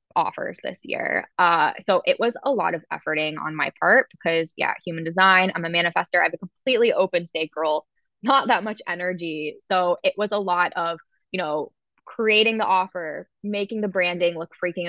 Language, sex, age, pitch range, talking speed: English, female, 10-29, 175-215 Hz, 190 wpm